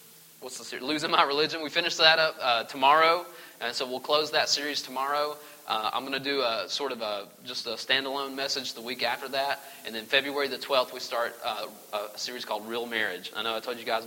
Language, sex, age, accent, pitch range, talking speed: English, male, 30-49, American, 115-170 Hz, 235 wpm